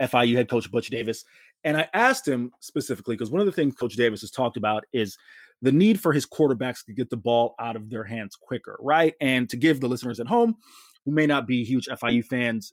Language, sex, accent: English, male, American